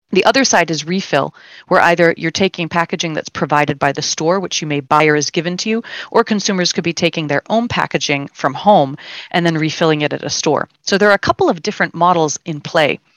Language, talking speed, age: English, 230 wpm, 30-49